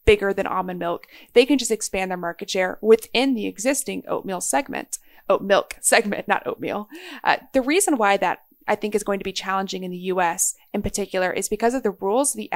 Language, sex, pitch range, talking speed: English, female, 185-235 Hz, 210 wpm